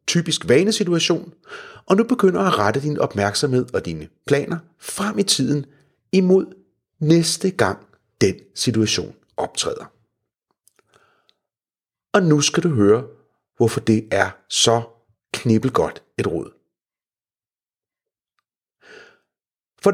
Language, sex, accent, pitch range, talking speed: Danish, male, native, 115-190 Hz, 100 wpm